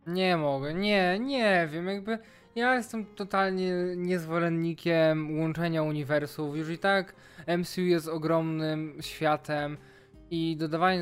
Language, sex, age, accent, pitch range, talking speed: Polish, male, 20-39, native, 150-170 Hz, 115 wpm